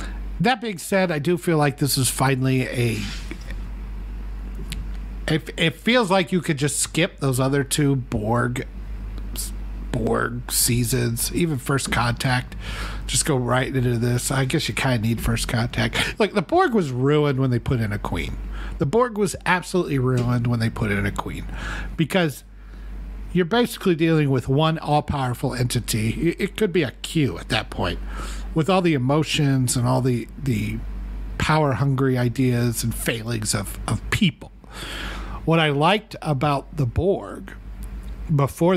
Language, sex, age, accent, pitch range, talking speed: English, male, 50-69, American, 115-150 Hz, 160 wpm